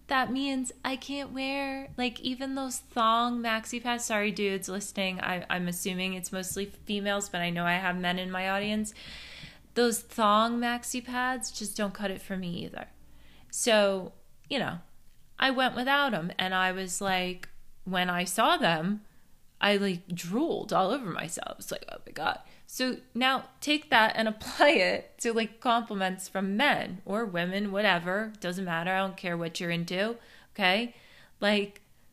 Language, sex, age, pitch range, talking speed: English, female, 20-39, 180-230 Hz, 170 wpm